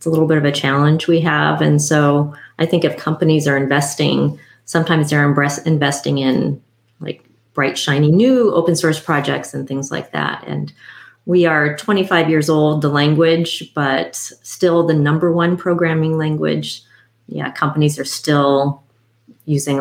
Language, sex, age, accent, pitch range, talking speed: English, female, 30-49, American, 135-165 Hz, 160 wpm